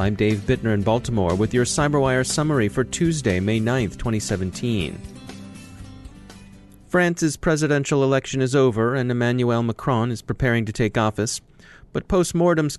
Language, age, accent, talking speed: English, 30-49, American, 135 wpm